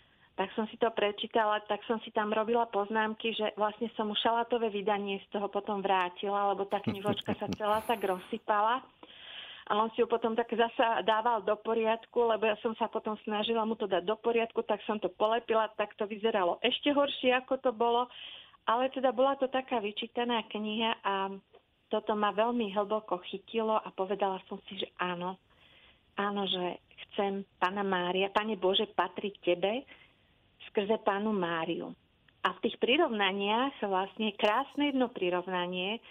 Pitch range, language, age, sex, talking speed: 195-225 Hz, Slovak, 40-59, female, 165 wpm